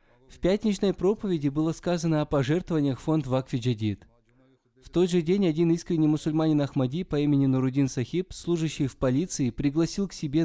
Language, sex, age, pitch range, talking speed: Russian, male, 20-39, 125-170 Hz, 160 wpm